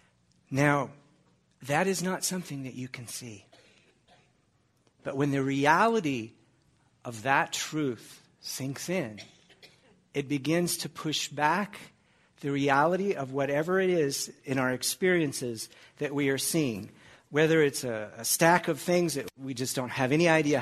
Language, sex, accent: English, male, American